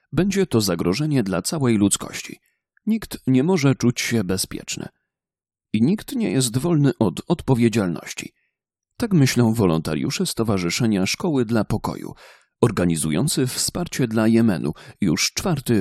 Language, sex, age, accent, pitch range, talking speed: Polish, male, 40-59, native, 105-155 Hz, 120 wpm